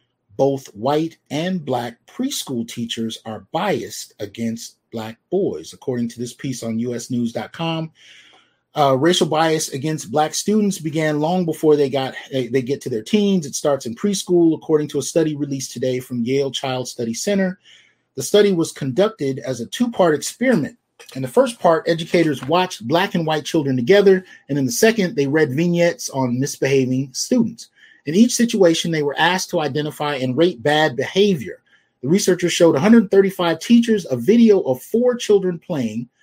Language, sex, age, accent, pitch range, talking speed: English, male, 30-49, American, 130-185 Hz, 160 wpm